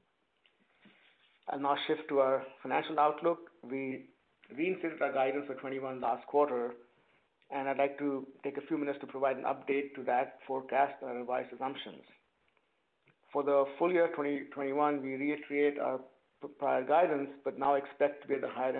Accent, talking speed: Indian, 170 wpm